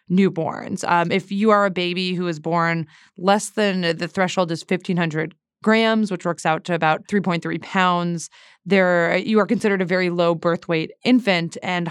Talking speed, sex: 170 wpm, female